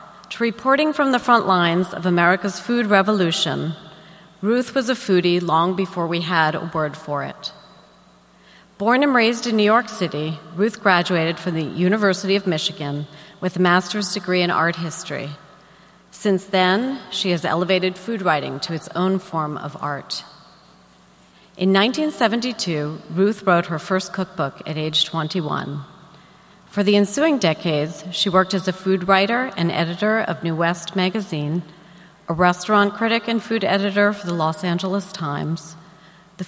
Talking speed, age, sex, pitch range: 155 wpm, 40-59, female, 160-200 Hz